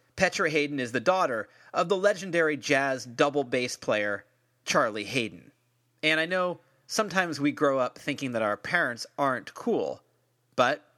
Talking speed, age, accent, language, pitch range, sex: 155 wpm, 30-49, American, English, 125-165 Hz, male